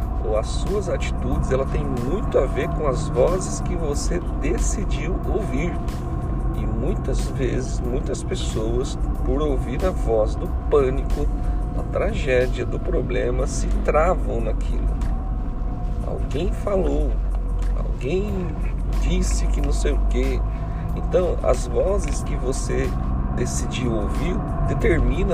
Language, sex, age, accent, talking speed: Portuguese, male, 40-59, Brazilian, 120 wpm